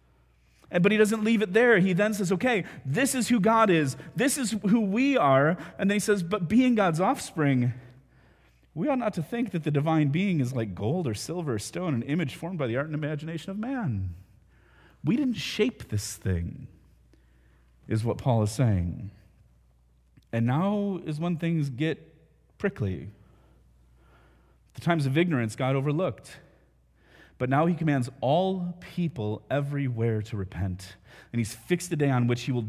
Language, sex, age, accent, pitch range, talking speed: English, male, 30-49, American, 100-160 Hz, 175 wpm